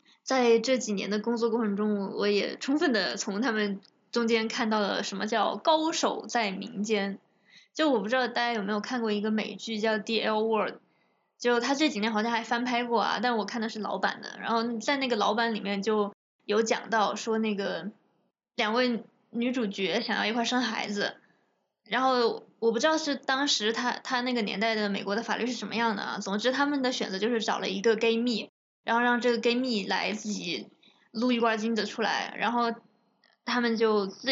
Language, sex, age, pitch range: Chinese, female, 20-39, 215-245 Hz